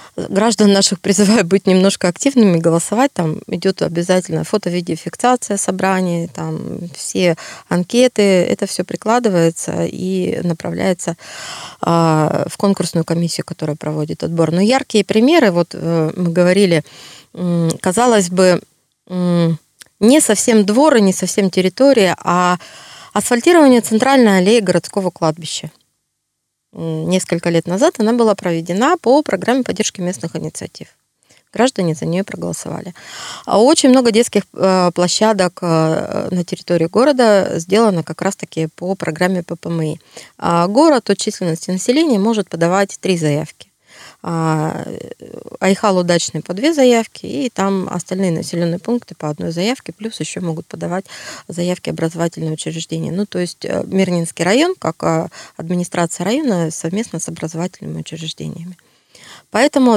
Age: 20-39